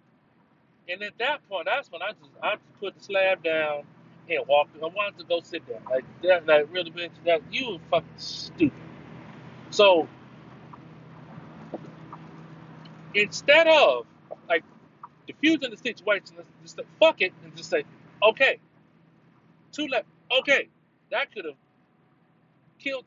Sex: male